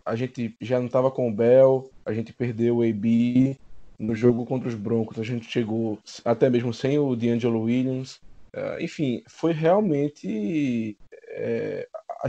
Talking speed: 160 wpm